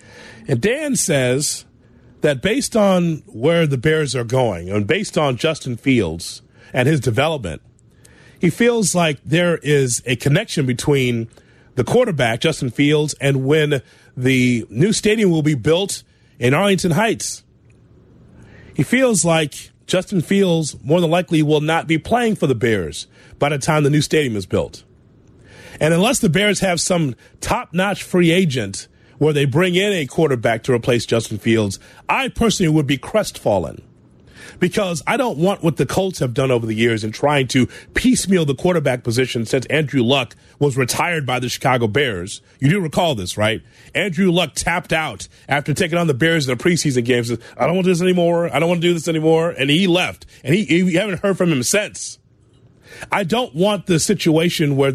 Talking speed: 180 wpm